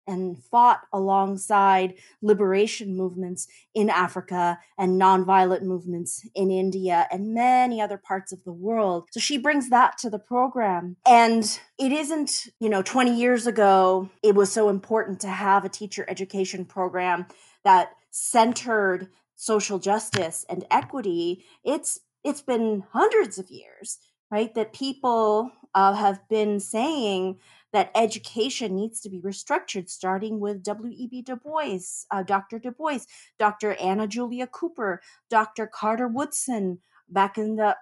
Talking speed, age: 145 wpm, 30-49